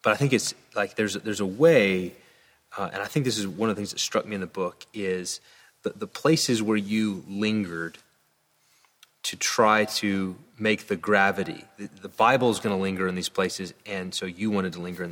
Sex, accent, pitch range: male, American, 95-115 Hz